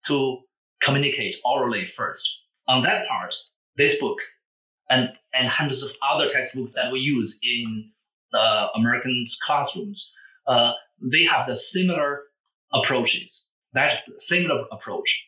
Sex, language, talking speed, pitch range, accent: male, English, 120 wpm, 130-200 Hz, Chinese